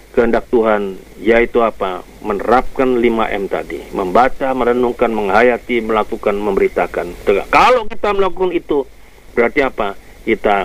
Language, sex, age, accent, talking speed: Indonesian, male, 50-69, native, 105 wpm